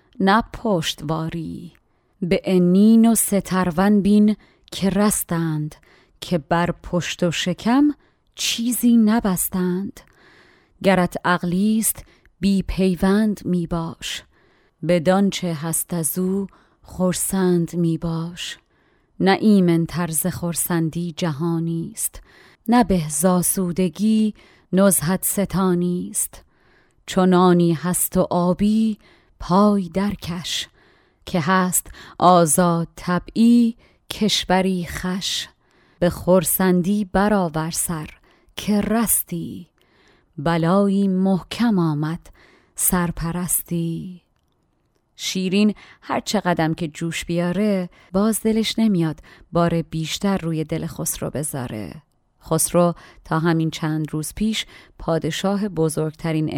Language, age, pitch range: Persian, 30-49, 165-195 Hz